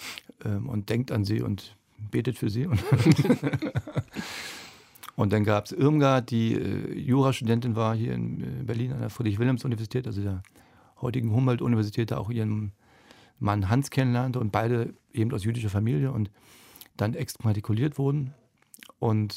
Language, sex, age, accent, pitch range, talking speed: German, male, 40-59, German, 110-130 Hz, 140 wpm